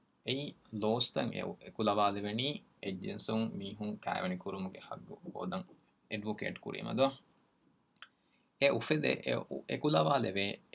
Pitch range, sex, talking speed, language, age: 100-120 Hz, male, 125 wpm, Urdu, 20-39